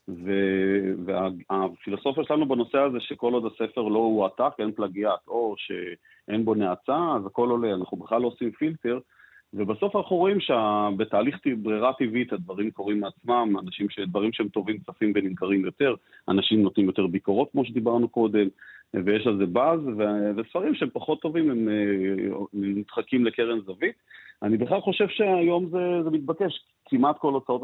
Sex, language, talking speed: male, Hebrew, 155 wpm